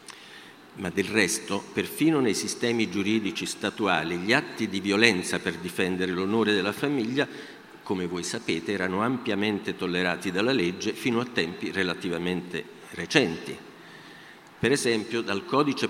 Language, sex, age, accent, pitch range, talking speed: Italian, male, 50-69, native, 90-120 Hz, 130 wpm